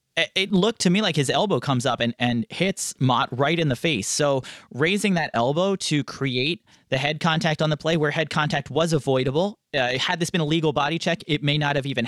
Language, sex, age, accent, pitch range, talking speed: English, male, 30-49, American, 130-165 Hz, 235 wpm